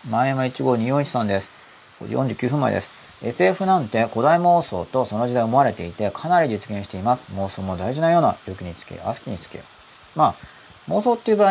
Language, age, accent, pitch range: Japanese, 40-59, native, 85-125 Hz